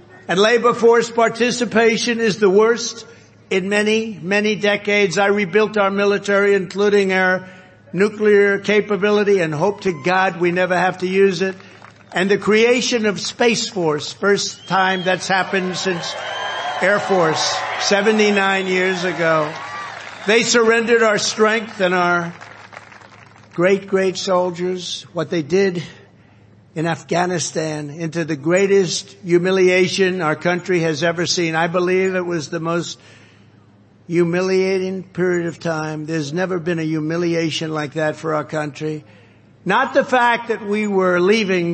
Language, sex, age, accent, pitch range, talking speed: English, male, 60-79, American, 155-200 Hz, 135 wpm